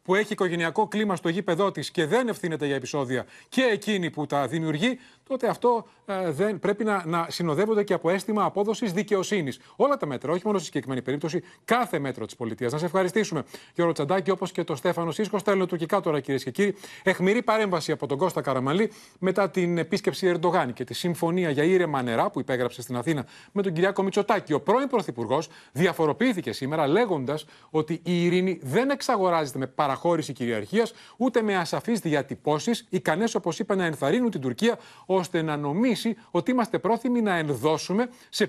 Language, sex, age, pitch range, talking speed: Greek, male, 30-49, 150-210 Hz, 180 wpm